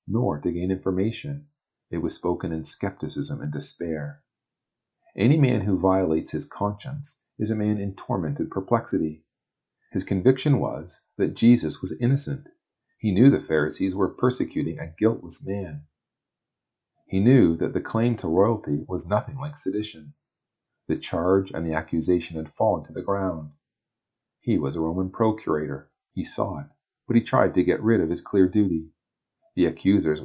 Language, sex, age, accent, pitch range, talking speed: English, male, 40-59, American, 80-110 Hz, 160 wpm